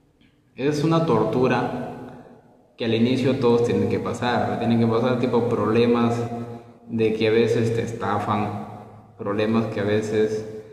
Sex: male